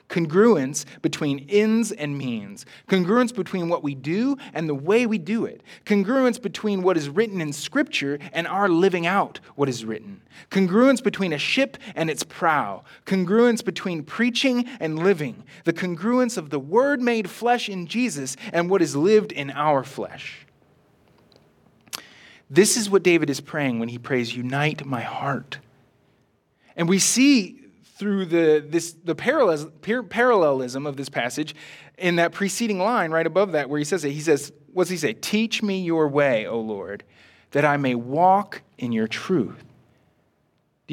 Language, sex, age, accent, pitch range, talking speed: English, male, 30-49, American, 150-215 Hz, 165 wpm